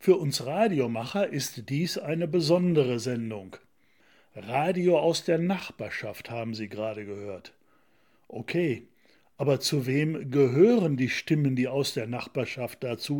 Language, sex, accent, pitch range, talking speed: German, male, German, 130-175 Hz, 125 wpm